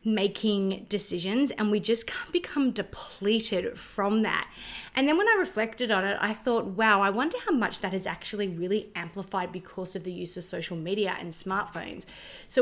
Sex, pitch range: female, 195-245 Hz